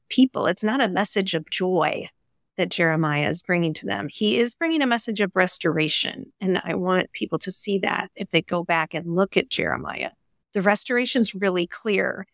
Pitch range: 170-210 Hz